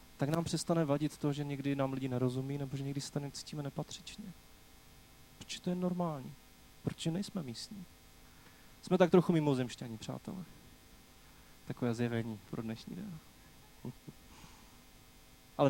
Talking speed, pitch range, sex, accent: 135 wpm, 130-160 Hz, male, native